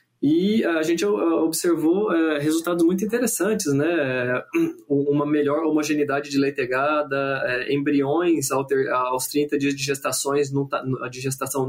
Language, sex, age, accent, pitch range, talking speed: Portuguese, male, 20-39, Brazilian, 140-170 Hz, 125 wpm